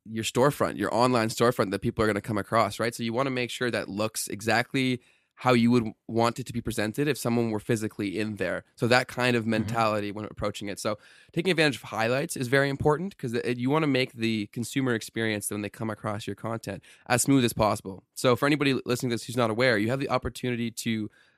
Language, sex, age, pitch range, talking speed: English, male, 20-39, 110-130 Hz, 235 wpm